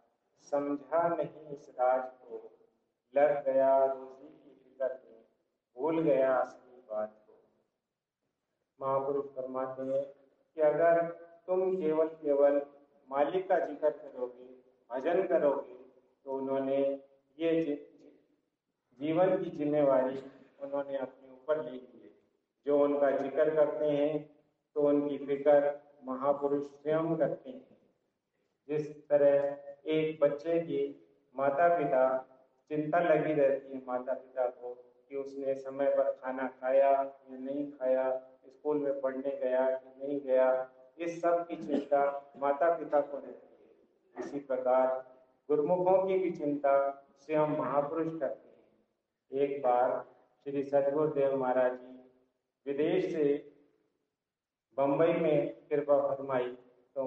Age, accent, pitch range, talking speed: 50-69, native, 130-150 Hz, 120 wpm